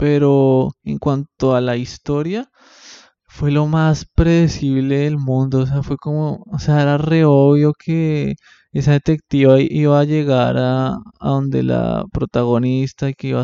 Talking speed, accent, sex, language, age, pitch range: 155 wpm, Colombian, male, Spanish, 20-39, 135-160 Hz